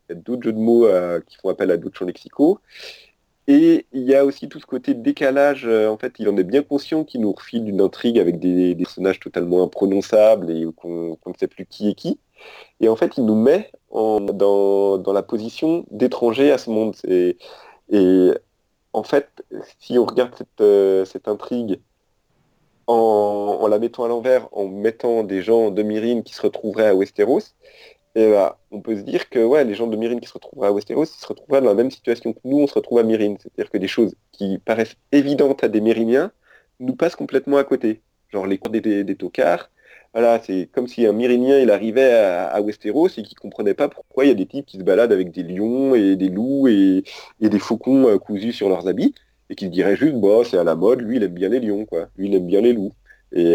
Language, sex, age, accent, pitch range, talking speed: French, male, 30-49, French, 100-135 Hz, 225 wpm